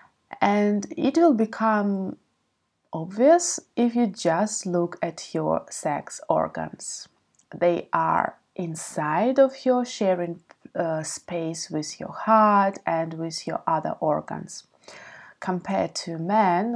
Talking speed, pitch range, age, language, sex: 115 wpm, 160-210 Hz, 20-39, English, female